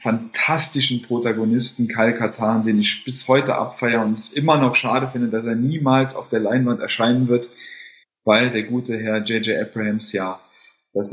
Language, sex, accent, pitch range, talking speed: German, male, German, 110-130 Hz, 165 wpm